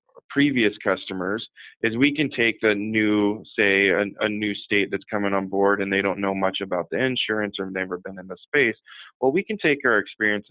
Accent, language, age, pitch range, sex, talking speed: American, English, 20-39, 100-125 Hz, male, 215 wpm